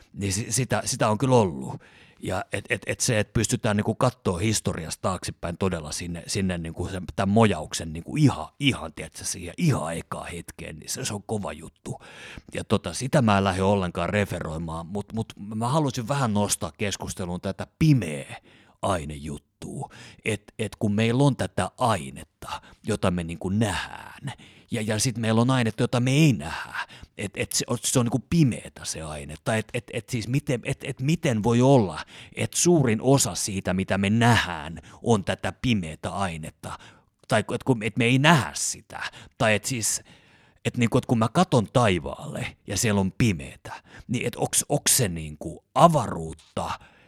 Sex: male